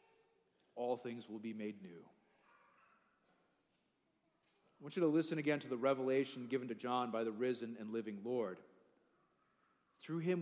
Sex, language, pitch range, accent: male, English, 135-185 Hz, American